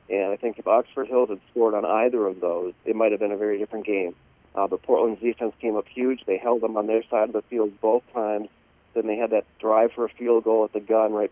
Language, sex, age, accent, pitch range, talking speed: English, male, 40-59, American, 105-120 Hz, 270 wpm